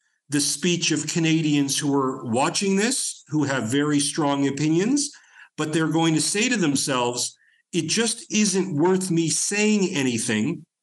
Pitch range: 145-180 Hz